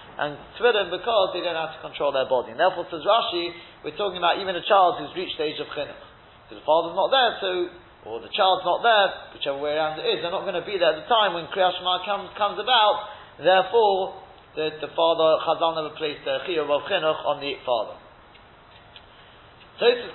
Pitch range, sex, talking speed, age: 155-195 Hz, male, 210 wpm, 30-49